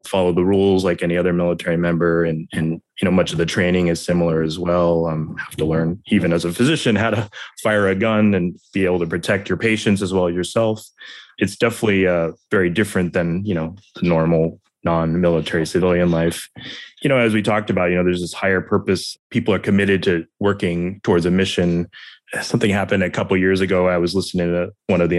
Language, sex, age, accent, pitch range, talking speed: English, male, 20-39, American, 85-105 Hz, 220 wpm